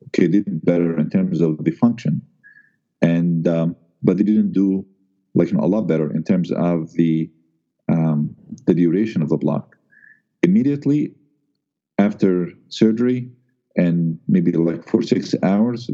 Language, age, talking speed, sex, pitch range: English, 50-69, 145 wpm, male, 85-110 Hz